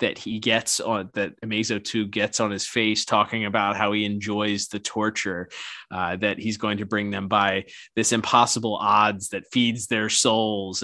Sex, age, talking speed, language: male, 20-39, 185 wpm, English